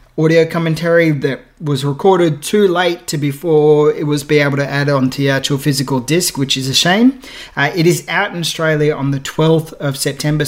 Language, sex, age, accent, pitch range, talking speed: English, male, 20-39, Australian, 140-170 Hz, 200 wpm